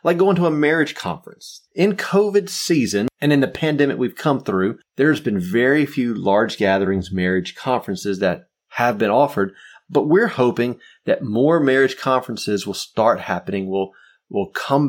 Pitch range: 100-140 Hz